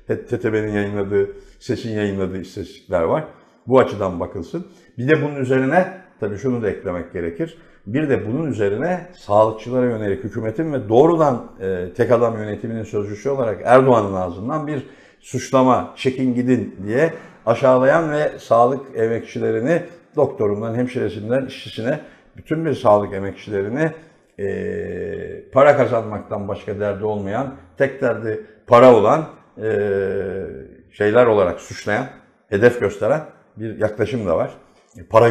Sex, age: male, 60-79